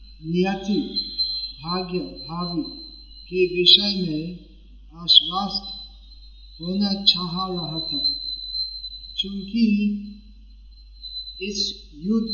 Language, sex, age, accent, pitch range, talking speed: Hindi, male, 50-69, native, 175-205 Hz, 65 wpm